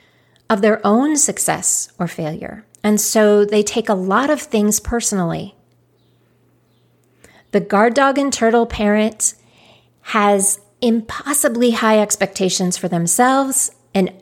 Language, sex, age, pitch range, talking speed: English, female, 40-59, 185-235 Hz, 120 wpm